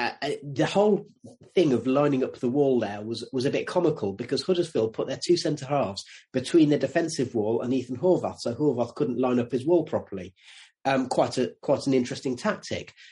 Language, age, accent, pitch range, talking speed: English, 30-49, British, 120-150 Hz, 195 wpm